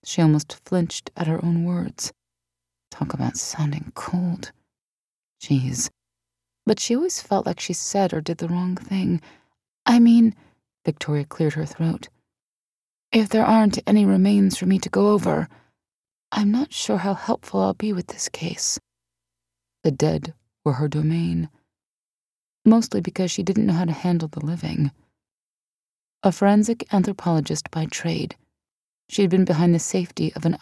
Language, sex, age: English, female, 30-49